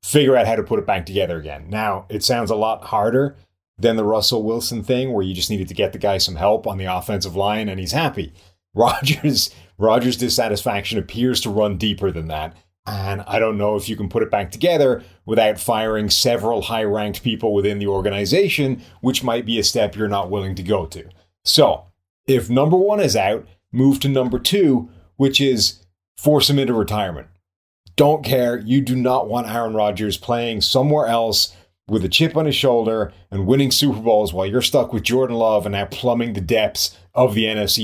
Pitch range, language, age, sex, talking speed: 100-125 Hz, English, 30-49, male, 200 wpm